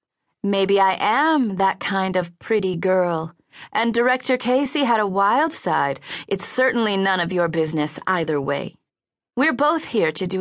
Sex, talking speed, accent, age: female, 160 wpm, American, 30-49